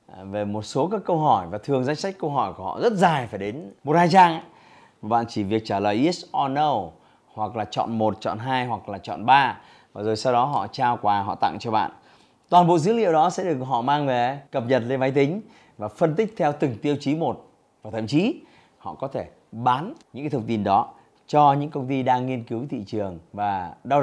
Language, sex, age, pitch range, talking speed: Vietnamese, male, 20-39, 115-165 Hz, 240 wpm